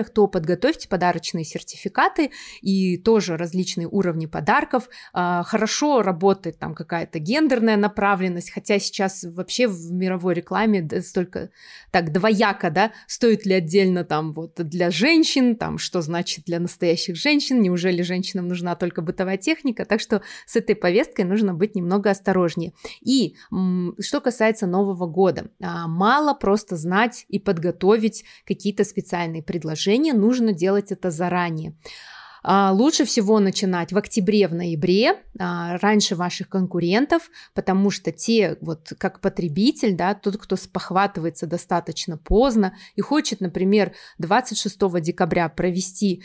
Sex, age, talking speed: female, 20-39, 130 wpm